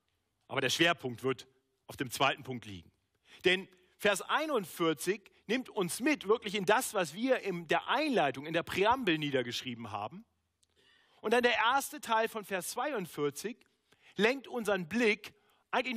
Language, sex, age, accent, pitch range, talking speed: German, male, 40-59, German, 130-205 Hz, 150 wpm